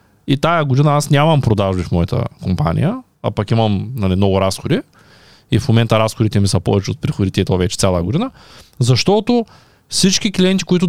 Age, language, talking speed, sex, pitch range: 20-39, Bulgarian, 180 wpm, male, 115-155 Hz